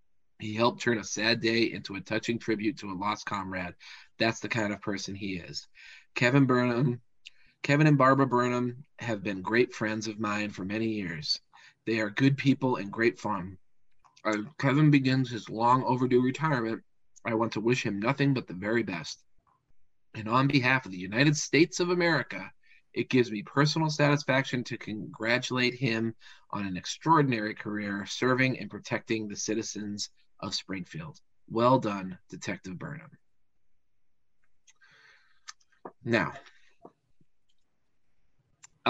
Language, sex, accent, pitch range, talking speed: English, male, American, 105-125 Hz, 145 wpm